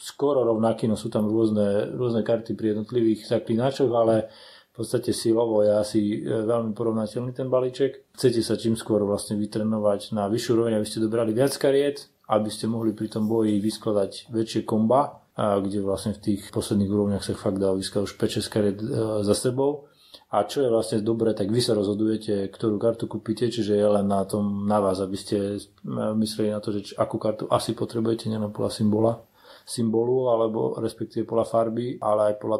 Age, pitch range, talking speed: 30-49, 105-115 Hz, 180 wpm